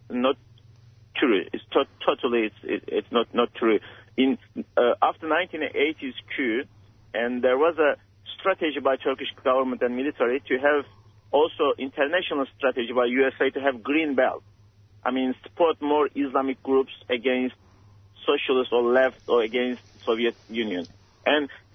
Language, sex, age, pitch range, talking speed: English, male, 50-69, 110-145 Hz, 140 wpm